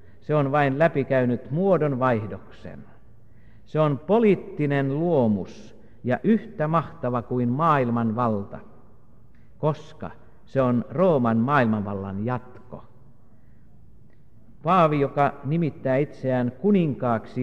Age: 50-69